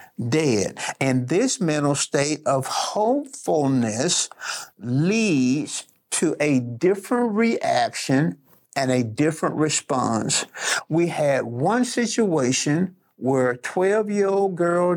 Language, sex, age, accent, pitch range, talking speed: English, male, 50-69, American, 135-185 Hz, 105 wpm